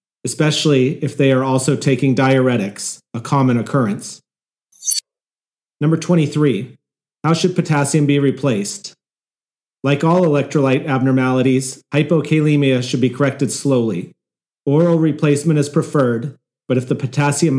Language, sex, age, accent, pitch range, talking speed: English, male, 40-59, American, 130-150 Hz, 115 wpm